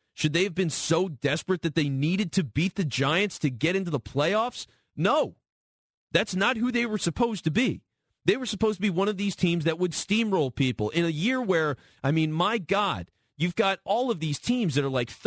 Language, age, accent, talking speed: English, 30-49, American, 225 wpm